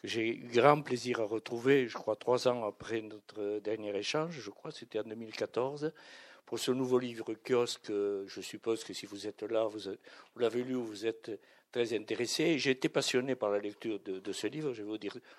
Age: 60-79